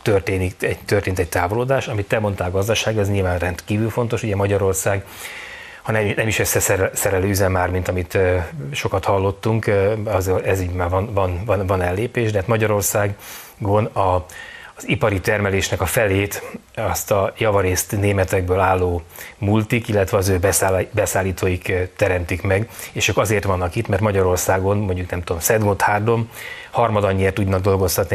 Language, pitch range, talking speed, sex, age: Hungarian, 90-105 Hz, 150 wpm, male, 30-49